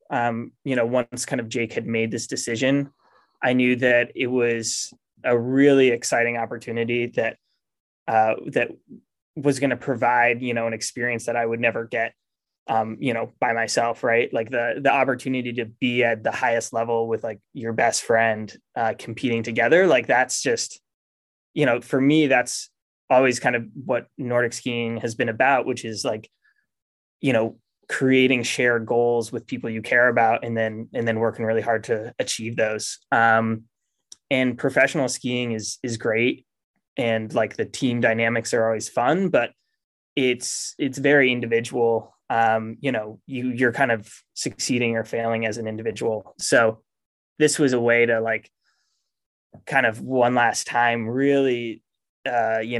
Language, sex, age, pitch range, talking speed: English, male, 20-39, 115-130 Hz, 170 wpm